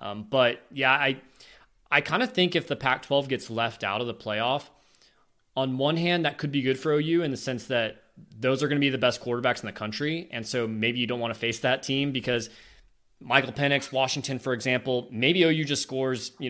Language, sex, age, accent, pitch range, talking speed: English, male, 20-39, American, 105-135 Hz, 225 wpm